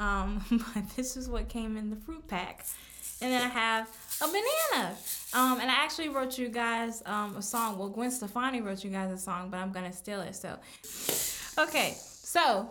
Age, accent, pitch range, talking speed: 10-29, American, 210-265 Hz, 200 wpm